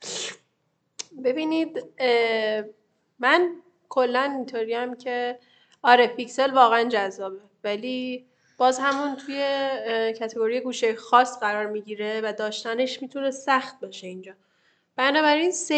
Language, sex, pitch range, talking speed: Persian, female, 220-275 Hz, 95 wpm